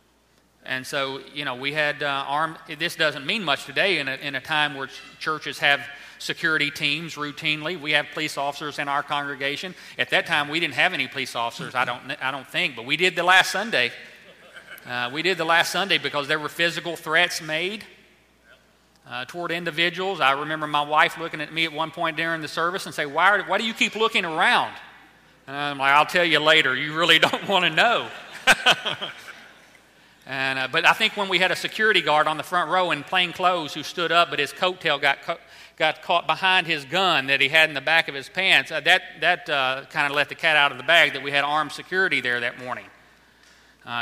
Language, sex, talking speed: English, male, 225 wpm